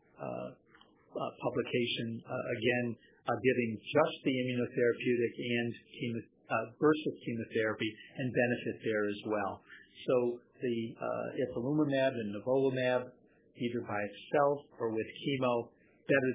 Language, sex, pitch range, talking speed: English, male, 110-125 Hz, 120 wpm